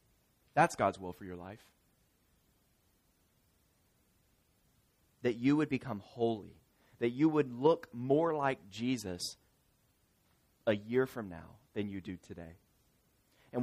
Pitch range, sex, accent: 90-120 Hz, male, American